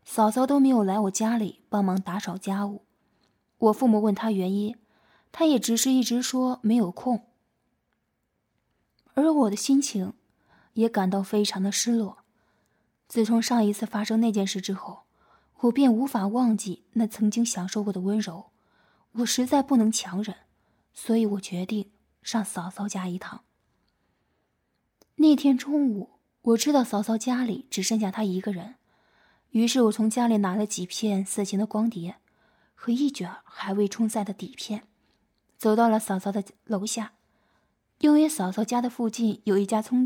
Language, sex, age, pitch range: Chinese, female, 20-39, 200-245 Hz